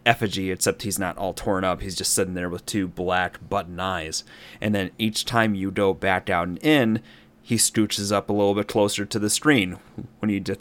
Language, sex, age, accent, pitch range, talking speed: English, male, 30-49, American, 95-115 Hz, 220 wpm